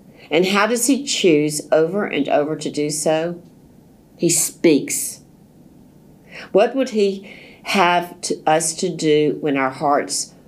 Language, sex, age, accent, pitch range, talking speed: English, female, 50-69, American, 150-200 Hz, 130 wpm